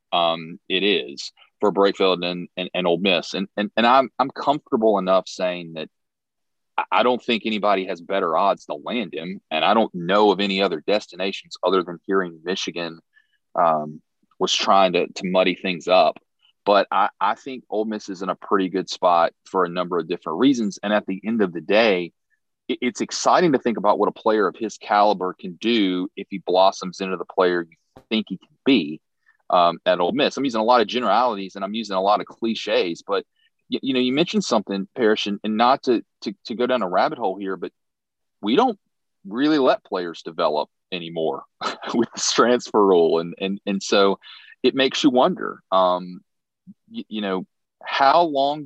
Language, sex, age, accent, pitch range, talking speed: English, male, 30-49, American, 90-120 Hz, 200 wpm